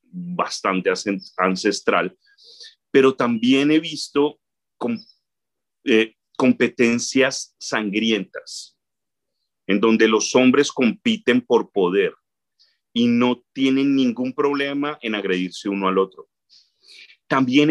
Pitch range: 115-165 Hz